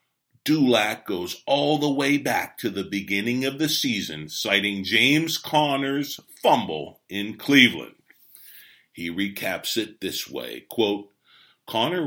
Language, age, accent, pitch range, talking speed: English, 40-59, American, 105-135 Hz, 120 wpm